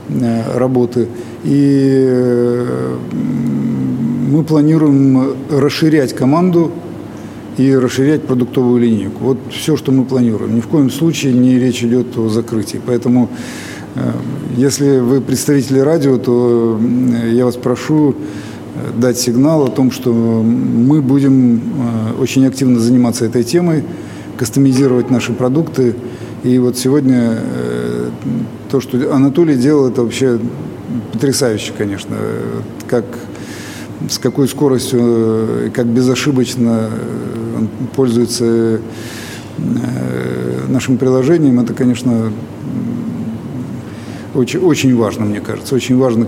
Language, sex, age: Russian, male, 50-69